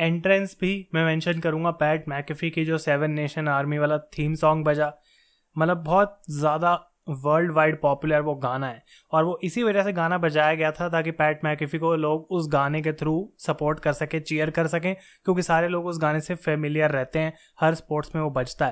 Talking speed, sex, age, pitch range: 200 wpm, male, 20-39, 150-170 Hz